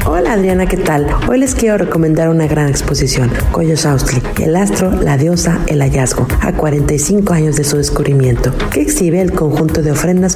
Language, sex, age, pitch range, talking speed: Spanish, female, 50-69, 155-195 Hz, 180 wpm